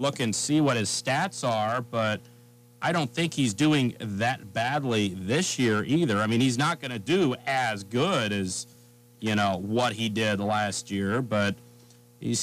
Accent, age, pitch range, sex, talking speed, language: American, 30-49, 105-125 Hz, male, 180 wpm, English